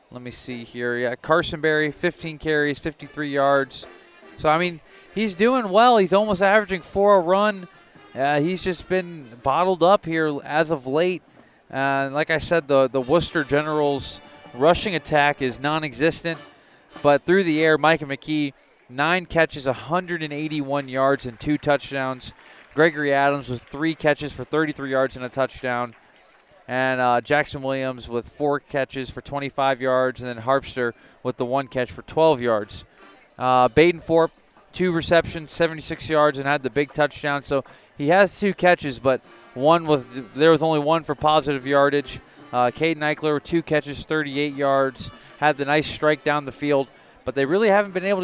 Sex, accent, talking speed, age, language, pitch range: male, American, 170 wpm, 30-49, English, 135-165 Hz